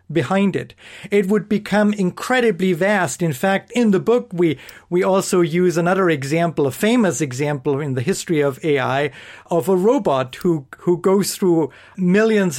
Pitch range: 150-190 Hz